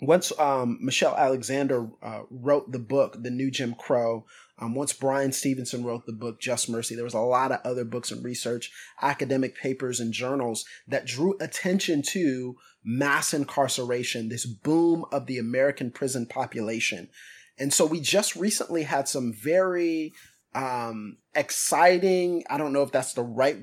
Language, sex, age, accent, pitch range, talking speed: English, male, 30-49, American, 120-150 Hz, 165 wpm